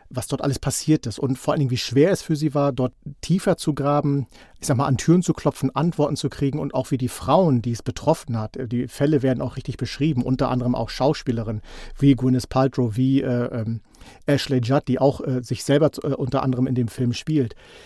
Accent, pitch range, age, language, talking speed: German, 125-150 Hz, 50-69, German, 230 wpm